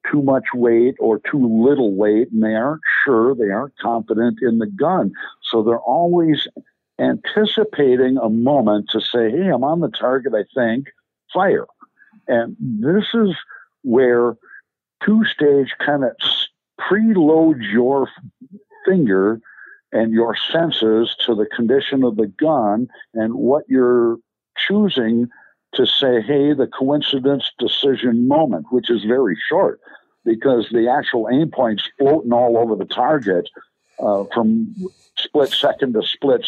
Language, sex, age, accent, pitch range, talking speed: English, male, 60-79, American, 115-160 Hz, 135 wpm